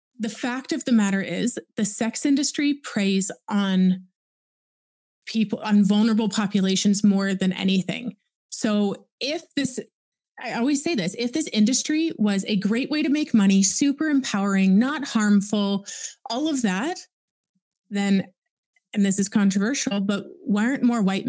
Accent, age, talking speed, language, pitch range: American, 20-39, 145 wpm, English, 195-245 Hz